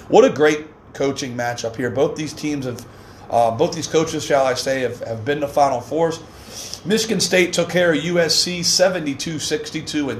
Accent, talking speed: American, 175 wpm